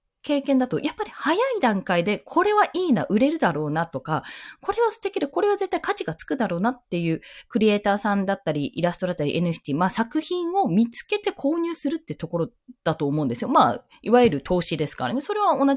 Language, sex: Japanese, female